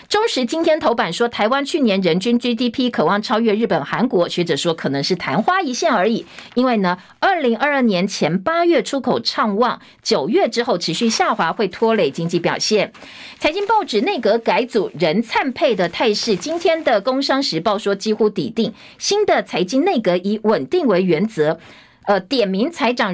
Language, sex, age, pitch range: Chinese, female, 50-69, 195-270 Hz